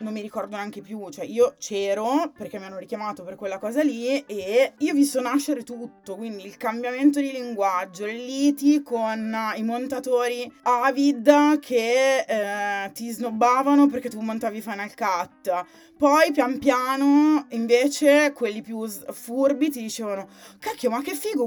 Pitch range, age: 205-270 Hz, 20-39